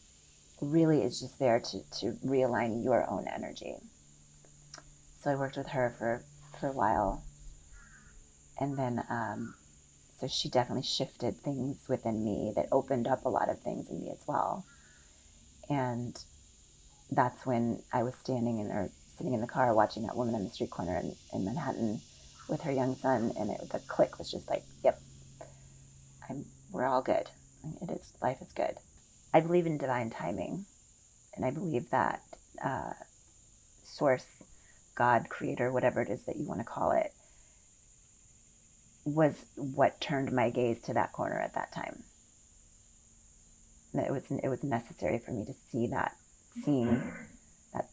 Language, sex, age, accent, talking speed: English, female, 30-49, American, 160 wpm